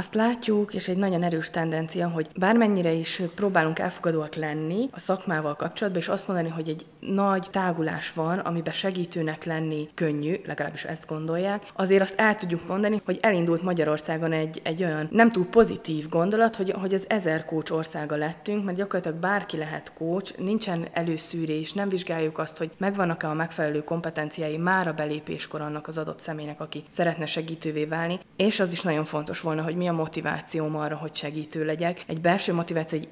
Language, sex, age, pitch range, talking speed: Hungarian, female, 20-39, 155-185 Hz, 175 wpm